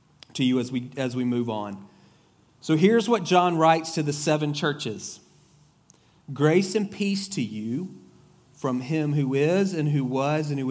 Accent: American